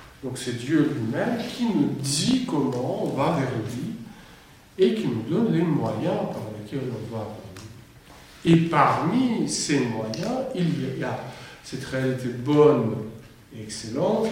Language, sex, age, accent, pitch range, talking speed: French, male, 60-79, French, 125-165 Hz, 150 wpm